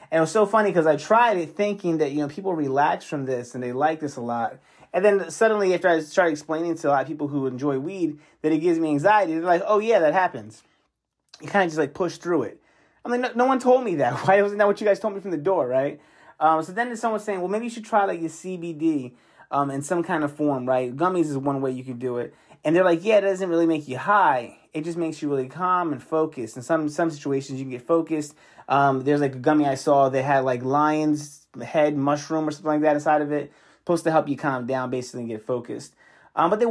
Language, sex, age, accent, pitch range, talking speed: English, male, 30-49, American, 140-185 Hz, 270 wpm